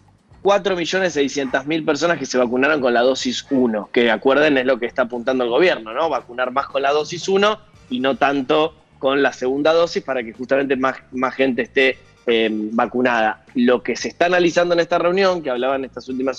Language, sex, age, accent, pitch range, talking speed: Spanish, male, 20-39, Argentinian, 125-165 Hz, 200 wpm